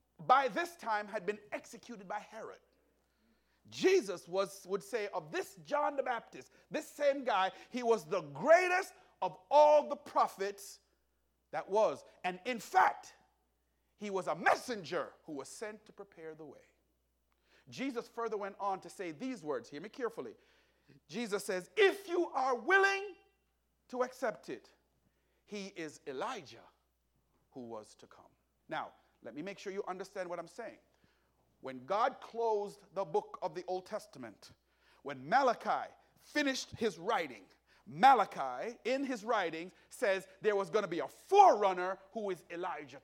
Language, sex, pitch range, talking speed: English, male, 185-265 Hz, 155 wpm